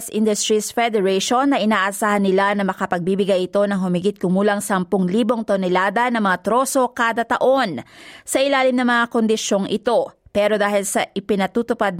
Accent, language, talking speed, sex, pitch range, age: native, Filipino, 140 wpm, female, 205-240 Hz, 20-39